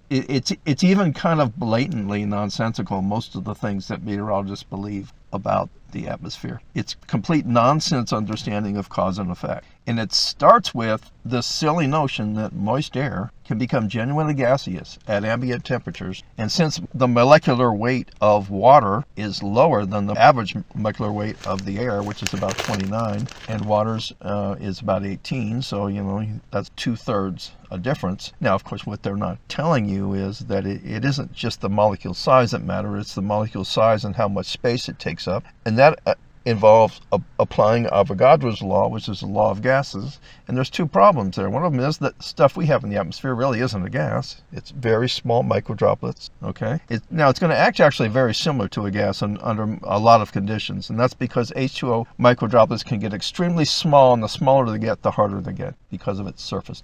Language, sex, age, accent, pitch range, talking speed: English, male, 50-69, American, 100-130 Hz, 195 wpm